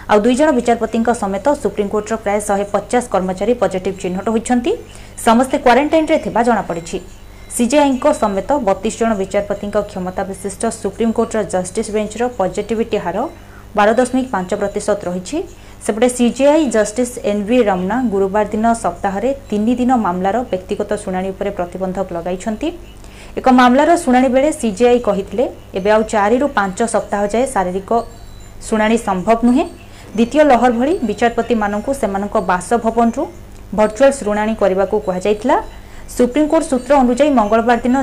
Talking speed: 115 wpm